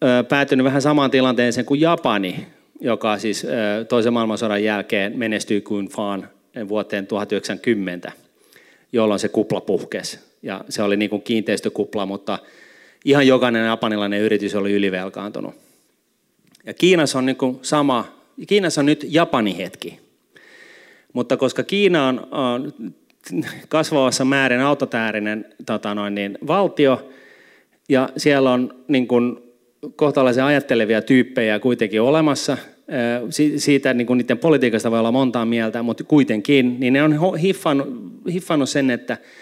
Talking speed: 115 wpm